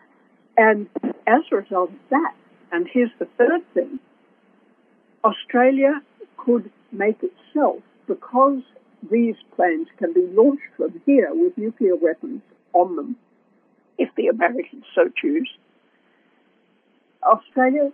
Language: English